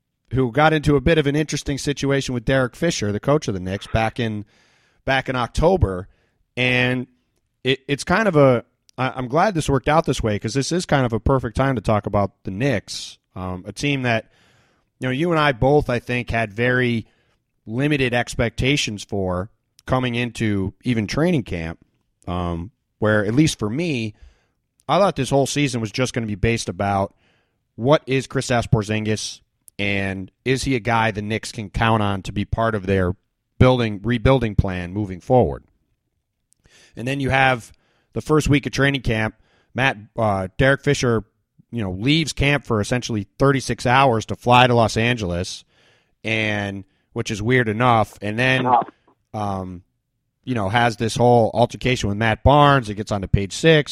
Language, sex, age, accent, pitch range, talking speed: English, male, 30-49, American, 105-135 Hz, 180 wpm